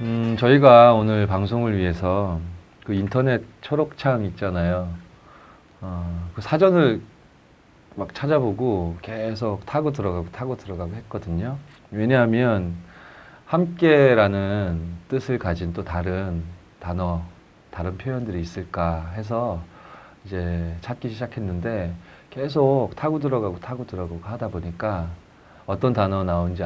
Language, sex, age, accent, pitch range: Korean, male, 30-49, native, 85-120 Hz